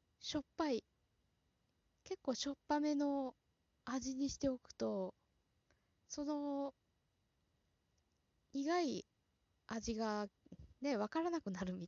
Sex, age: female, 20-39